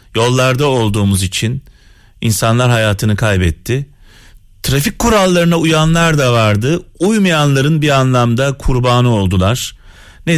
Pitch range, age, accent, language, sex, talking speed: 100-130 Hz, 40-59, native, Turkish, male, 100 wpm